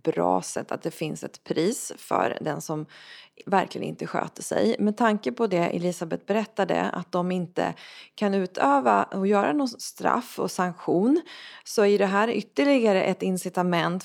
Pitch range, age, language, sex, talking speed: 180-220 Hz, 20-39, Swedish, female, 160 wpm